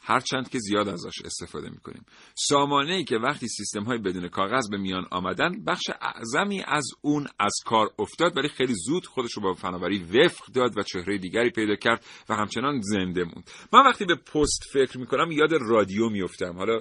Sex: male